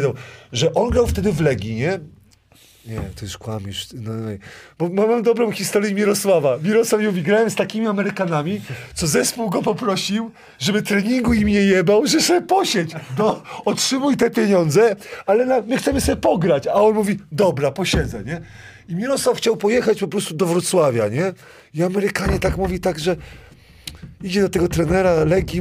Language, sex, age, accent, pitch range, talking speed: Polish, male, 40-59, native, 155-210 Hz, 170 wpm